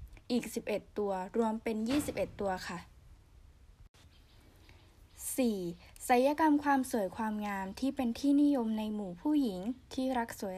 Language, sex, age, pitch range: Thai, female, 10-29, 190-255 Hz